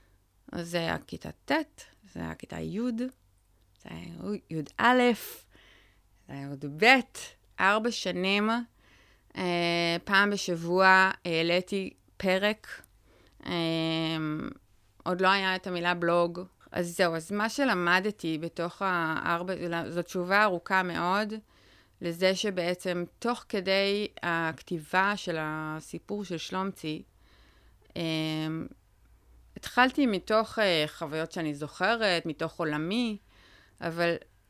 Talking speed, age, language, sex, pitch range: 105 wpm, 30-49, Hebrew, female, 165-205 Hz